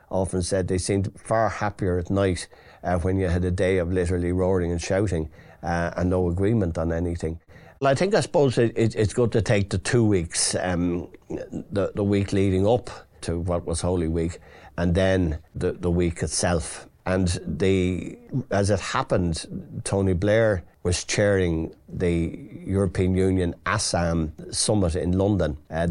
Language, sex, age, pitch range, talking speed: English, male, 50-69, 85-95 Hz, 170 wpm